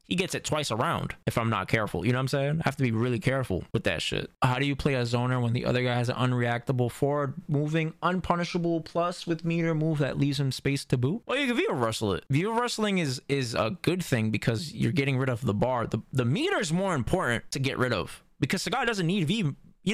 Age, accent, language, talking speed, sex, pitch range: 20-39, American, English, 260 wpm, male, 120-170 Hz